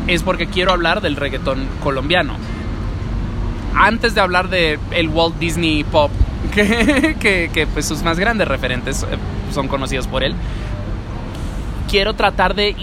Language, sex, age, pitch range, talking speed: English, male, 20-39, 130-170 Hz, 140 wpm